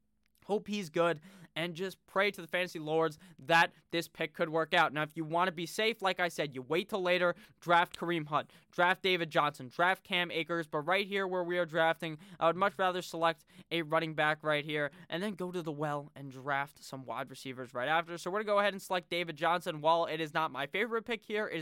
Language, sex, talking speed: English, male, 245 wpm